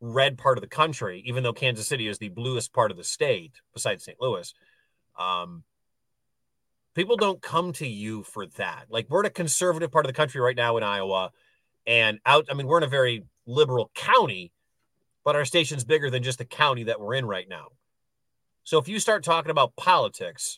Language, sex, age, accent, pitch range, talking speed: English, male, 40-59, American, 120-155 Hz, 205 wpm